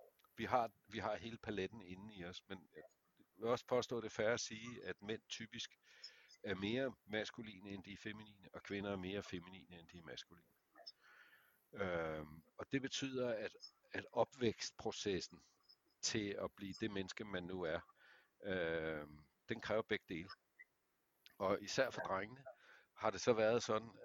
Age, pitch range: 60-79, 90-110 Hz